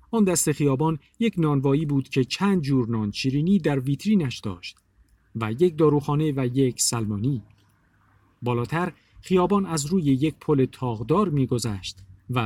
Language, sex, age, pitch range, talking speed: Persian, male, 50-69, 110-155 Hz, 140 wpm